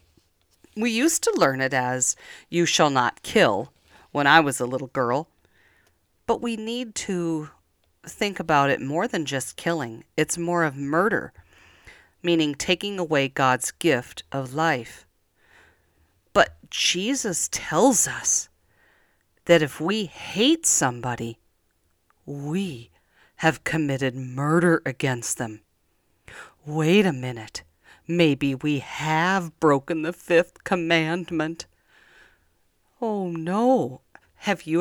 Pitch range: 135-205 Hz